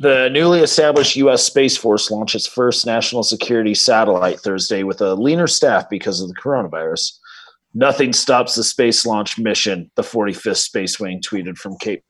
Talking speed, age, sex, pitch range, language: 170 wpm, 30-49, male, 105-140 Hz, English